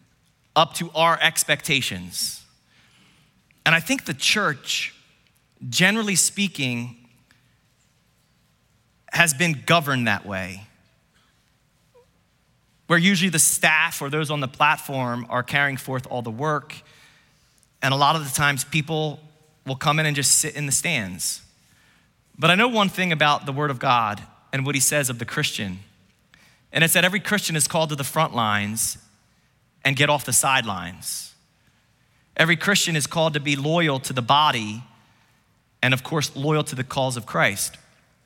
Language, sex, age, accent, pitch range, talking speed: English, male, 30-49, American, 130-155 Hz, 155 wpm